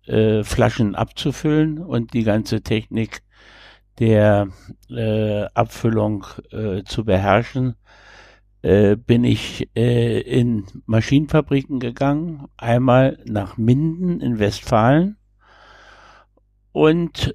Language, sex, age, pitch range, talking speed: German, male, 60-79, 105-135 Hz, 90 wpm